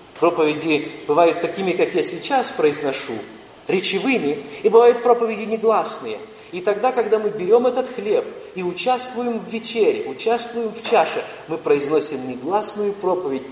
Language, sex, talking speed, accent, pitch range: Russian, male, 135 wpm, native, 165-255 Hz